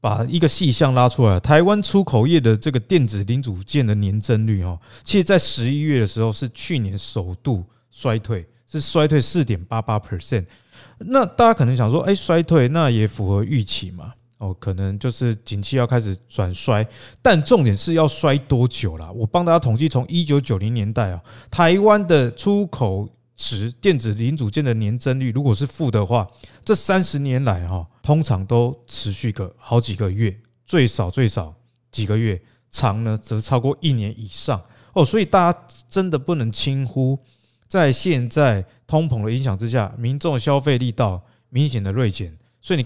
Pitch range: 110-145 Hz